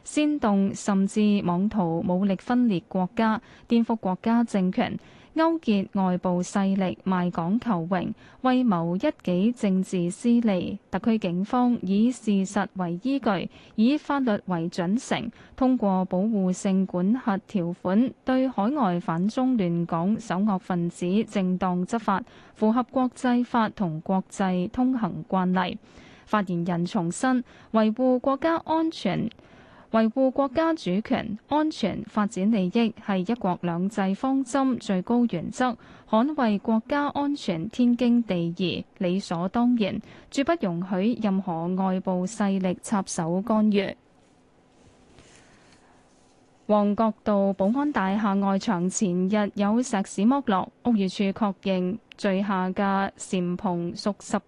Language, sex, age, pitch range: Chinese, female, 20-39, 185-235 Hz